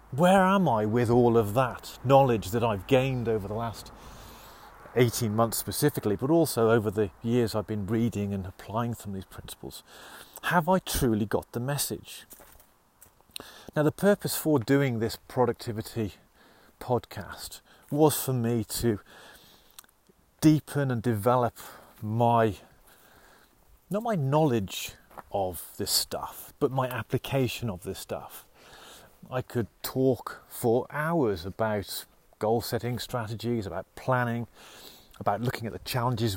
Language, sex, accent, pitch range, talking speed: English, male, British, 110-135 Hz, 130 wpm